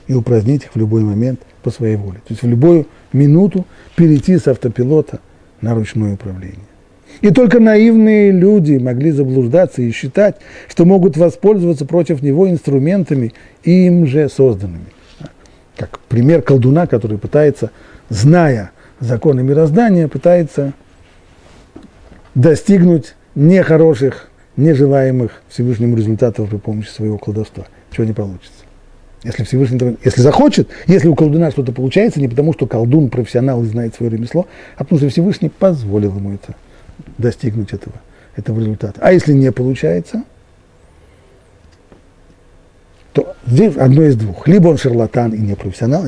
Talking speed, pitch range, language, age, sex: 135 wpm, 110-160 Hz, Russian, 40-59, male